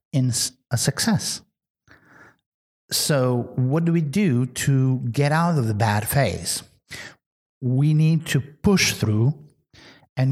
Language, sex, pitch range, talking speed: English, male, 115-150 Hz, 120 wpm